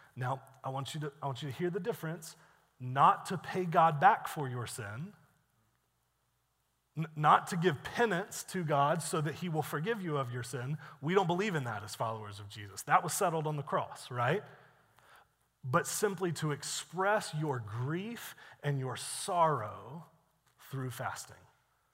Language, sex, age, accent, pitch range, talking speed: English, male, 30-49, American, 125-160 Hz, 160 wpm